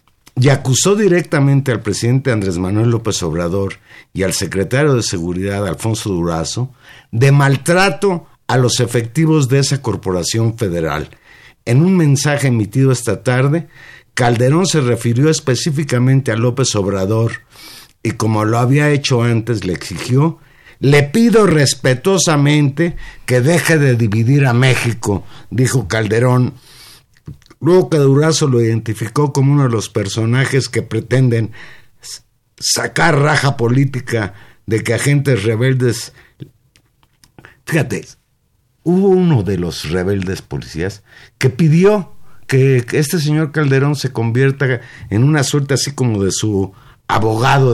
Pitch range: 110-140 Hz